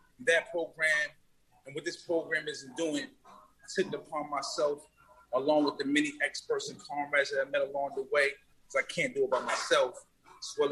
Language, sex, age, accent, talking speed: English, male, 30-49, American, 195 wpm